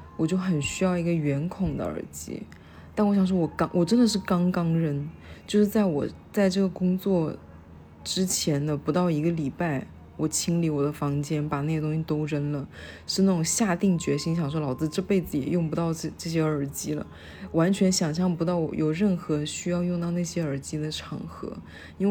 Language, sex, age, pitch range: Chinese, female, 20-39, 140-185 Hz